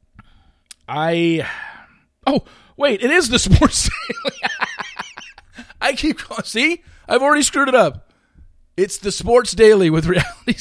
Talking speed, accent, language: 130 wpm, American, English